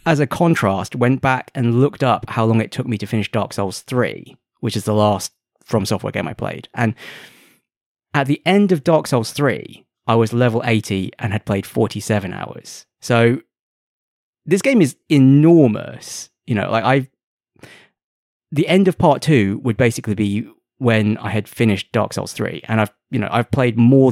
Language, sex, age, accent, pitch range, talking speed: English, male, 20-39, British, 105-135 Hz, 185 wpm